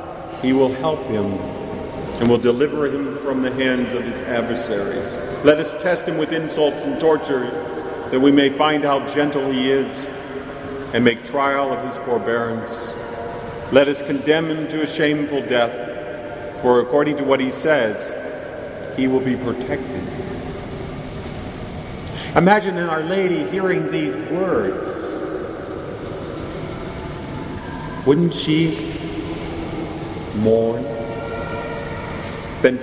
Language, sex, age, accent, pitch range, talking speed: English, male, 50-69, American, 130-175 Hz, 120 wpm